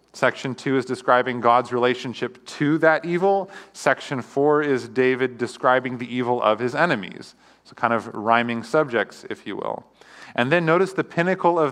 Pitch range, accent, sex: 110-130 Hz, American, male